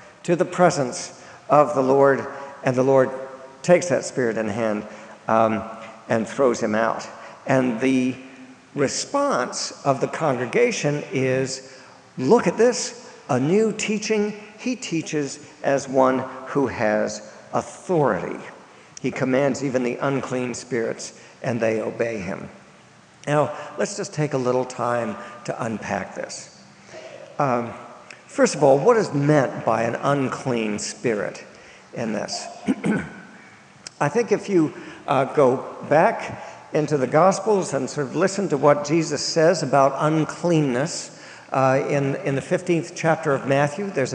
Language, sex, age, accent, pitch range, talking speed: English, male, 50-69, American, 130-170 Hz, 135 wpm